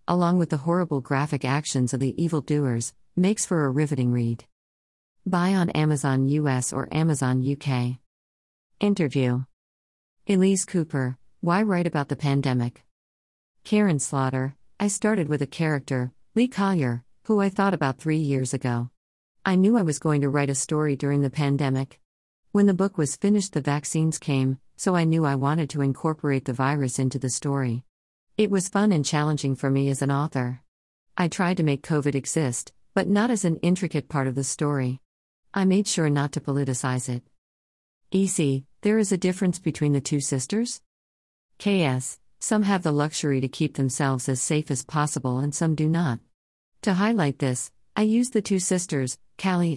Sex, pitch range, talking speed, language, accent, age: female, 130-175 Hz, 170 wpm, English, American, 50-69